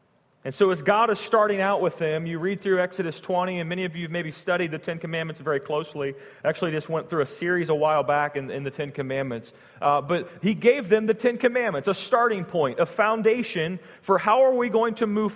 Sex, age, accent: male, 40-59, American